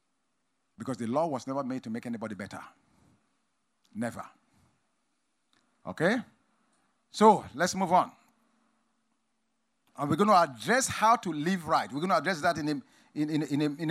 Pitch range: 190-250 Hz